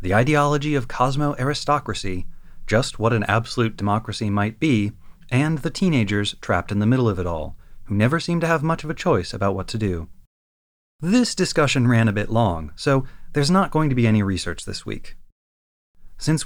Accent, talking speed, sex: American, 185 wpm, male